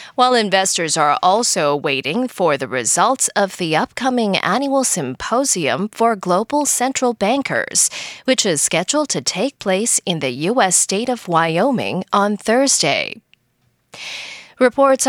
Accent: American